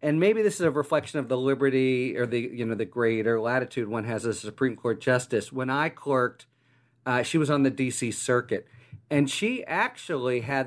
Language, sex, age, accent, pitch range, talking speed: English, male, 50-69, American, 120-145 Hz, 210 wpm